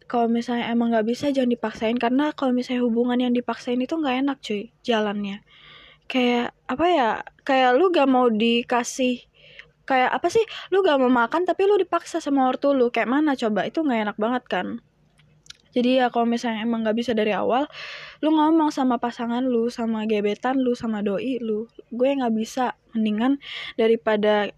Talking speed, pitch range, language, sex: 175 wpm, 230-275 Hz, Indonesian, female